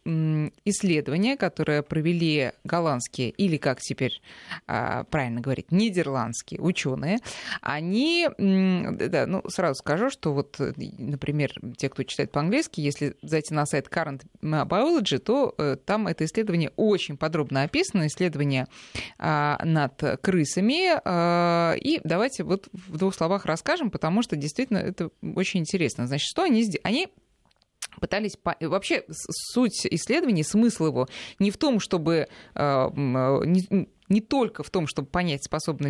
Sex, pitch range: female, 145-205 Hz